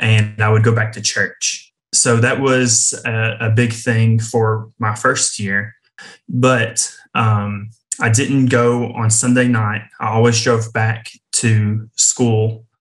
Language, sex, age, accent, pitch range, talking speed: English, male, 20-39, American, 110-120 Hz, 150 wpm